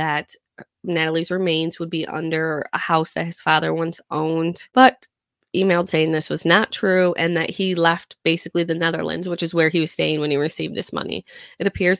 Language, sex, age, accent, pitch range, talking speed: English, female, 20-39, American, 160-190 Hz, 200 wpm